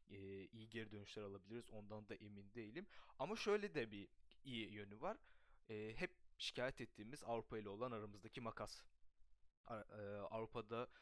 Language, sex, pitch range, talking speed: Turkish, male, 105-135 Hz, 130 wpm